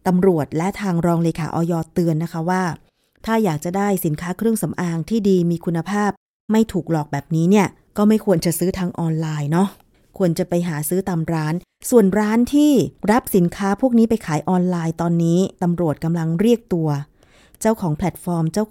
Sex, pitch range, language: female, 170-210 Hz, Thai